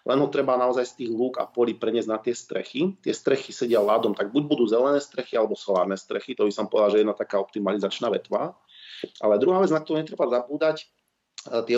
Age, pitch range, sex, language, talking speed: 40-59, 110-145 Hz, male, Slovak, 215 wpm